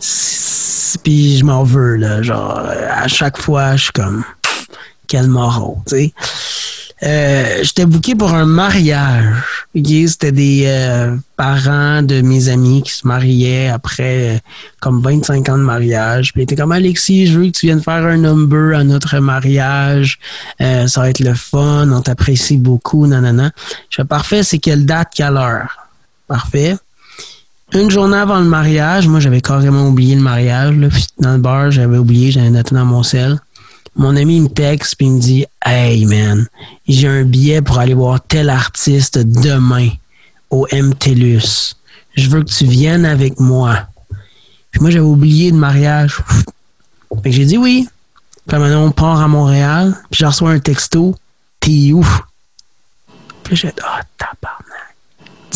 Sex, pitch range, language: male, 125-155 Hz, French